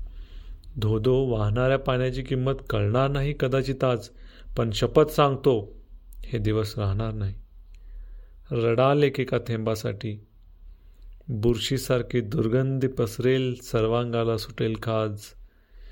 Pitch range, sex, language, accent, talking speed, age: 105-135 Hz, male, Marathi, native, 80 wpm, 40-59